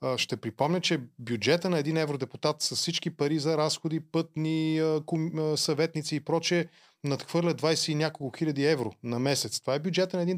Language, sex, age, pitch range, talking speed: Bulgarian, male, 20-39, 145-170 Hz, 170 wpm